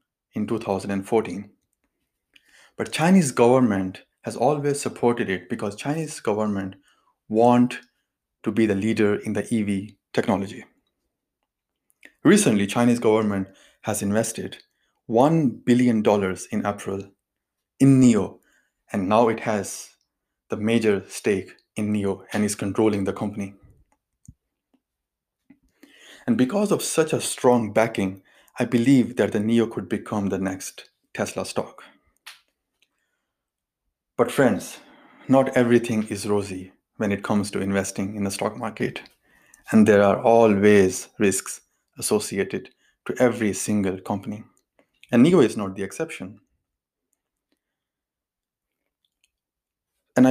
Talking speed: 115 wpm